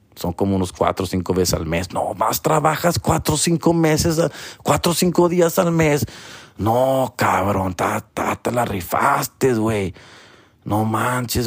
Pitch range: 105-150 Hz